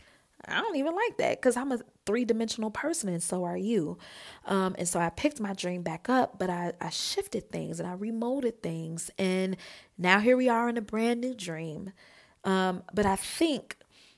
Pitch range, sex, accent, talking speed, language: 180-240 Hz, female, American, 195 wpm, English